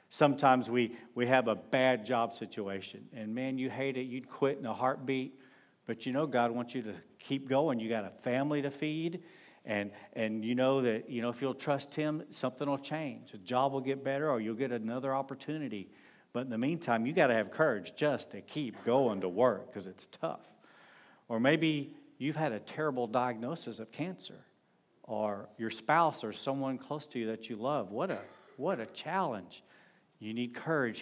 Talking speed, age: 200 wpm, 50-69